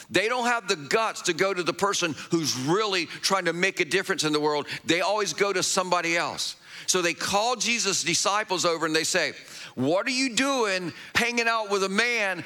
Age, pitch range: 50-69, 170-225 Hz